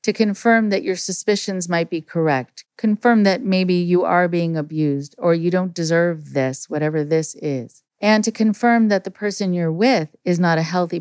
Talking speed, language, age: 190 wpm, English, 40-59